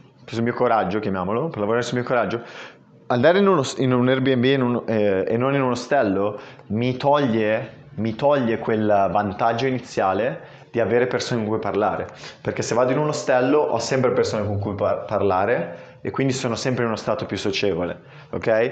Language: Italian